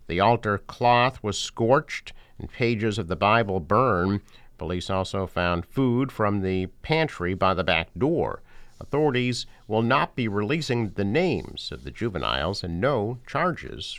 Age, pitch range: 50-69, 90-120 Hz